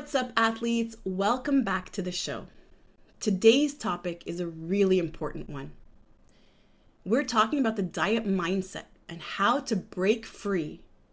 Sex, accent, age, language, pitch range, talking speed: female, American, 30-49, English, 180-225 Hz, 140 wpm